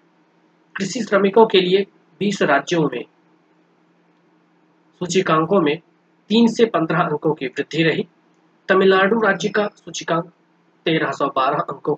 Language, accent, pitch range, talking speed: Hindi, native, 150-180 Hz, 110 wpm